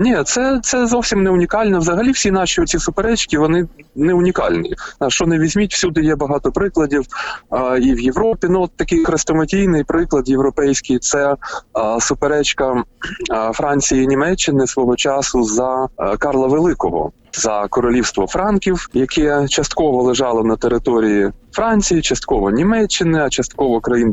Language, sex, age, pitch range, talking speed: Ukrainian, male, 20-39, 125-185 Hz, 140 wpm